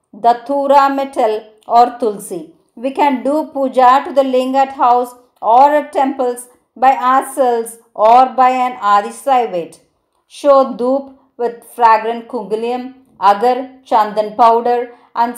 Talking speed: 120 wpm